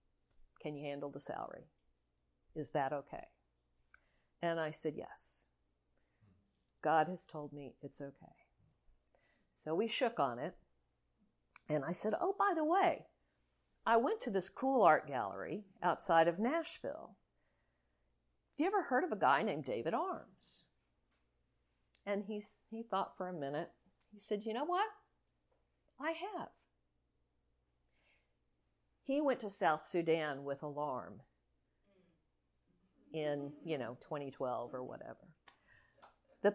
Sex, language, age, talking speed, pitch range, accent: female, English, 50-69, 130 wpm, 120-200 Hz, American